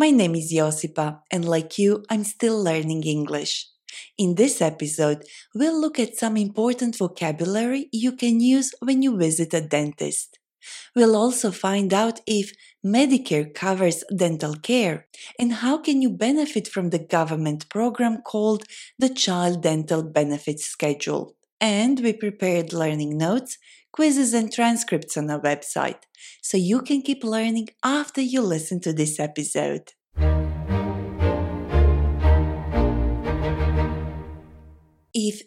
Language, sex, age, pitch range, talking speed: Ukrainian, female, 20-39, 155-235 Hz, 125 wpm